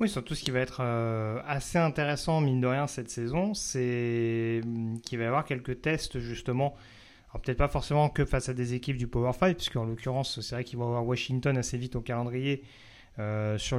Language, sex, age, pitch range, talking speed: French, male, 30-49, 115-145 Hz, 210 wpm